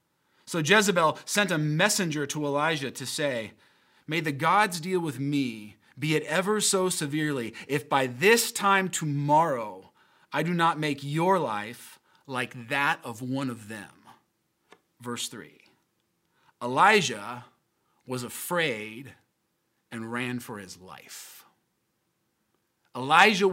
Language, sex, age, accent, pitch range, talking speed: English, male, 30-49, American, 145-210 Hz, 120 wpm